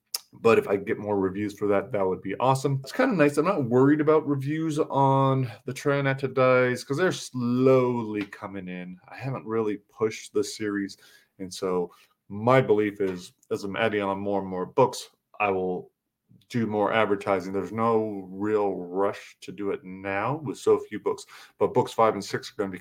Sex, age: male, 30-49